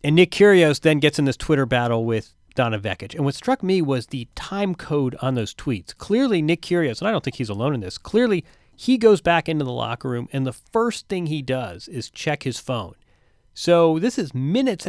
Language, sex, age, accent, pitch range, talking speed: English, male, 40-59, American, 120-170 Hz, 225 wpm